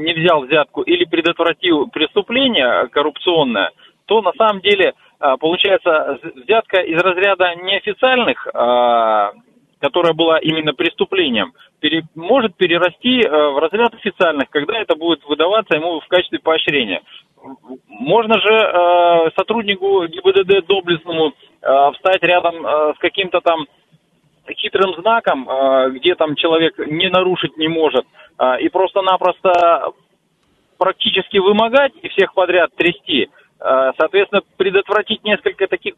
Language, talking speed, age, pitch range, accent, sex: Russian, 105 wpm, 30-49, 160-230 Hz, native, male